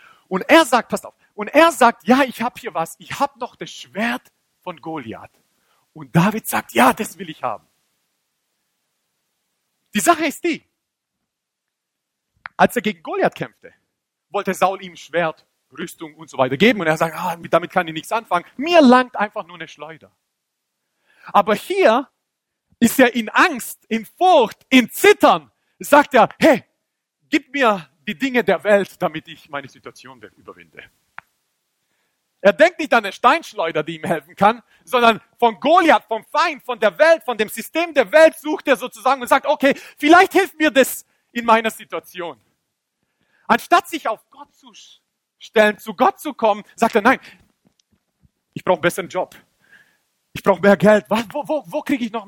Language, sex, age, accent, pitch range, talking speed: German, male, 40-59, German, 185-290 Hz, 175 wpm